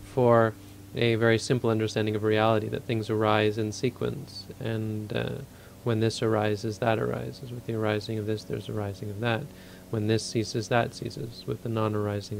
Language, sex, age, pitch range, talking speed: English, male, 30-49, 105-115 Hz, 175 wpm